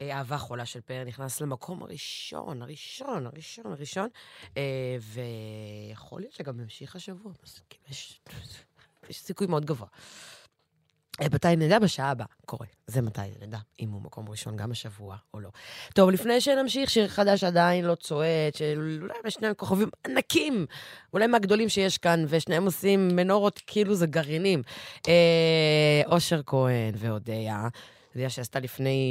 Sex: female